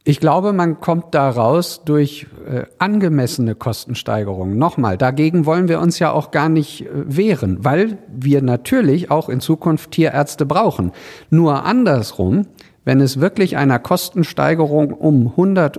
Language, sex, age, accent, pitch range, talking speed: German, male, 50-69, German, 130-165 Hz, 135 wpm